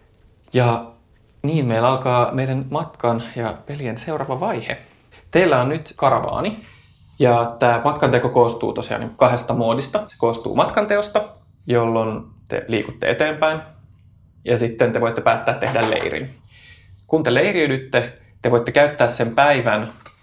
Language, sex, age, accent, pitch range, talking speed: Finnish, male, 20-39, native, 115-135 Hz, 130 wpm